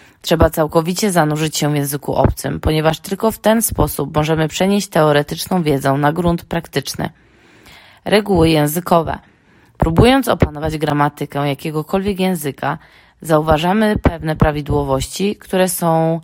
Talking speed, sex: 115 wpm, female